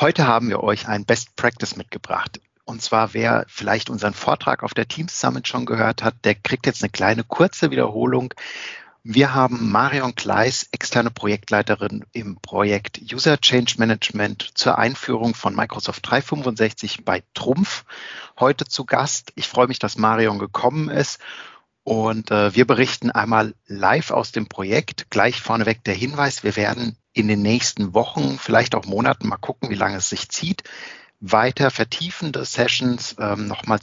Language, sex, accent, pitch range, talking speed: German, male, German, 105-125 Hz, 160 wpm